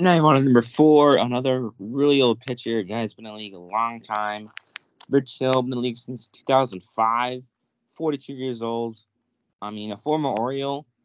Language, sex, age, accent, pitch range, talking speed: English, male, 20-39, American, 105-130 Hz, 200 wpm